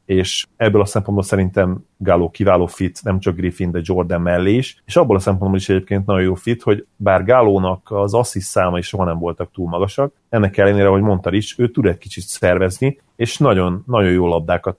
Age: 30-49